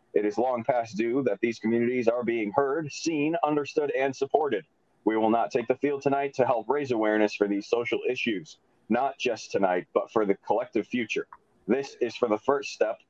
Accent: American